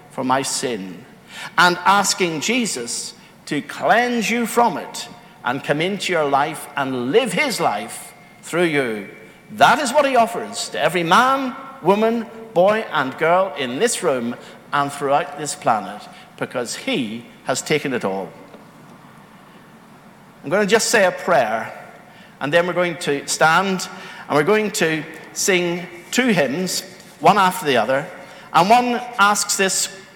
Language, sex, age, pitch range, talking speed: English, male, 60-79, 145-205 Hz, 150 wpm